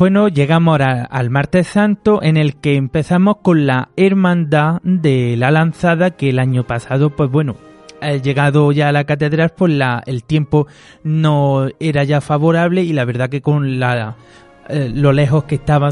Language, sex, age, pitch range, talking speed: Spanish, male, 30-49, 135-165 Hz, 175 wpm